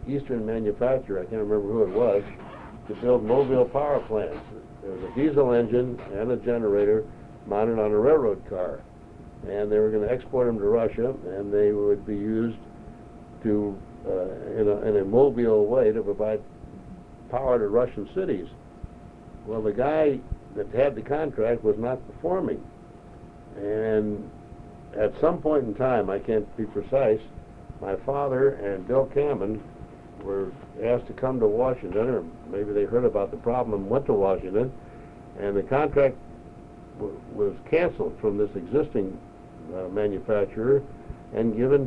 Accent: American